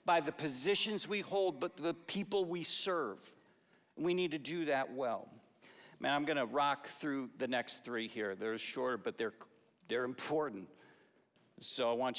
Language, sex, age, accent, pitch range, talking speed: English, male, 50-69, American, 160-215 Hz, 165 wpm